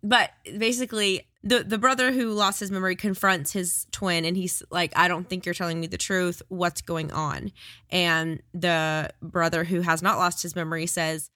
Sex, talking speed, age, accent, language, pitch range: female, 190 wpm, 20-39, American, English, 175-220 Hz